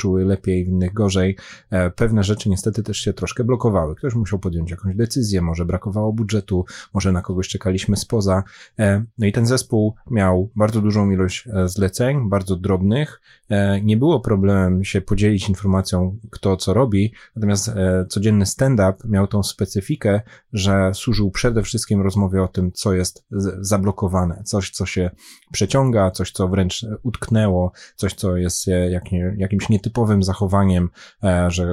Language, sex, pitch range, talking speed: Polish, male, 95-105 Hz, 150 wpm